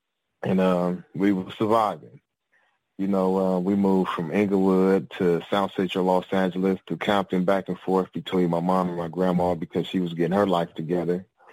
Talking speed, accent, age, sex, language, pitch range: 180 wpm, American, 30-49, male, English, 90-105 Hz